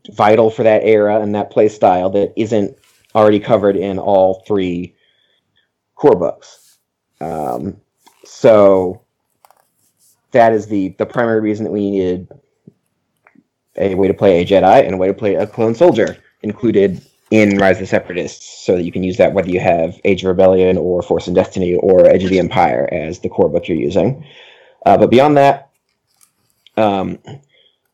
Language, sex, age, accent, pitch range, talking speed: English, male, 30-49, American, 95-115 Hz, 170 wpm